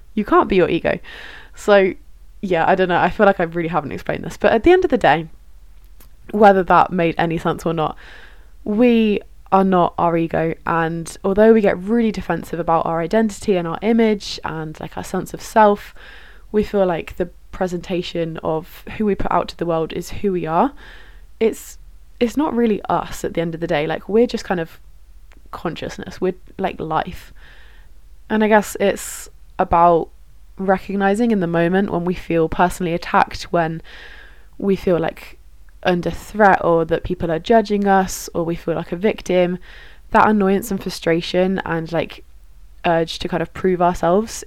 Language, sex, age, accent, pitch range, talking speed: English, female, 20-39, British, 165-205 Hz, 185 wpm